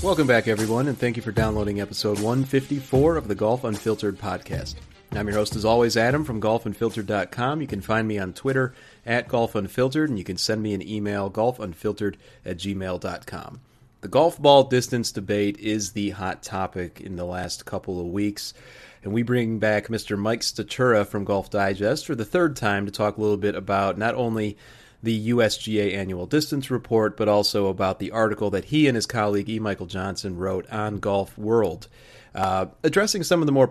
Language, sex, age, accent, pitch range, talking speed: English, male, 30-49, American, 100-120 Hz, 190 wpm